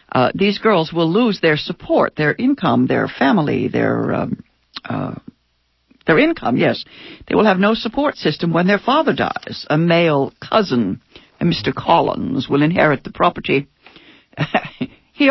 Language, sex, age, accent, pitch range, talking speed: English, female, 60-79, American, 145-230 Hz, 145 wpm